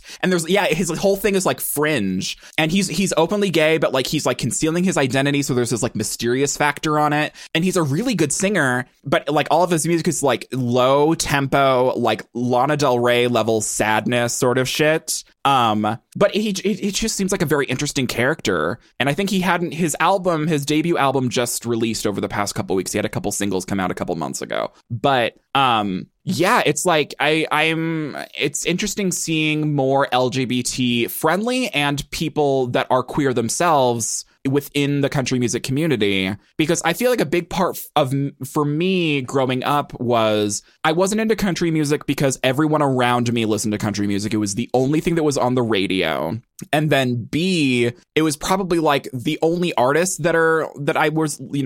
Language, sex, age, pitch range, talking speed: English, male, 20-39, 120-160 Hz, 195 wpm